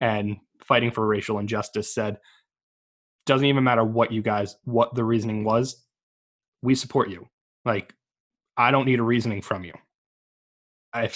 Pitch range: 110-125 Hz